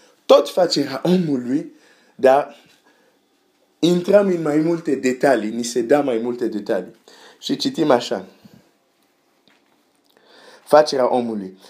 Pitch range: 115-155 Hz